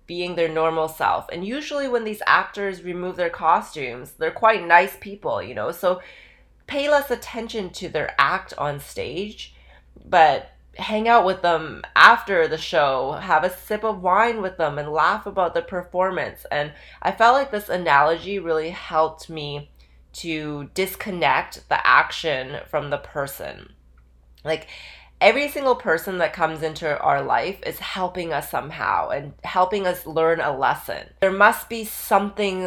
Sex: female